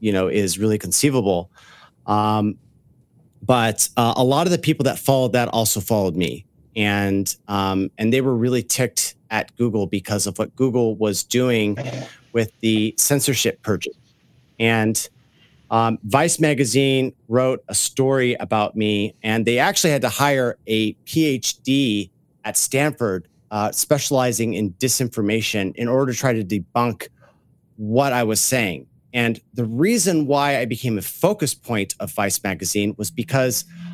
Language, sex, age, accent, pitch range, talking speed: English, male, 40-59, American, 105-130 Hz, 150 wpm